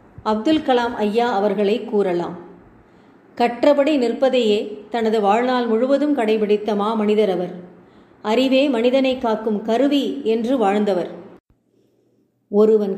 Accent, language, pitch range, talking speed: native, Tamil, 205-245 Hz, 90 wpm